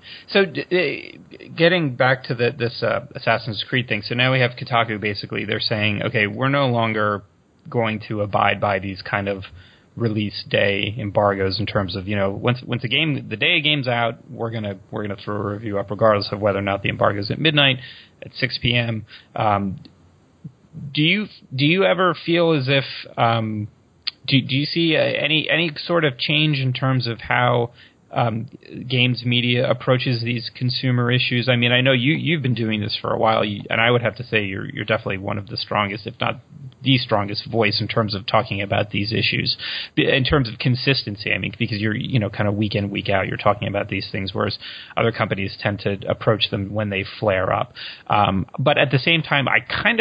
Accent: American